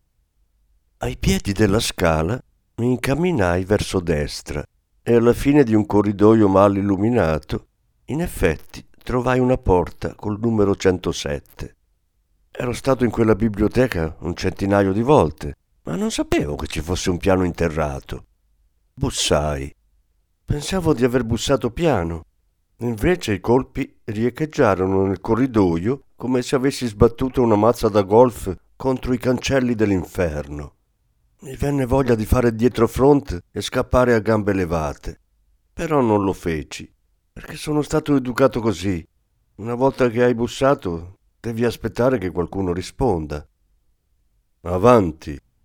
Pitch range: 85-125 Hz